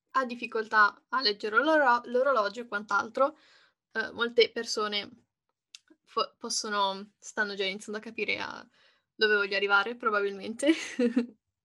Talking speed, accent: 120 wpm, native